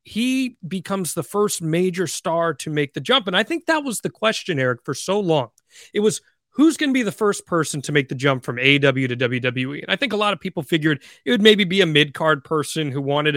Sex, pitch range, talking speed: male, 150-235 Hz, 245 wpm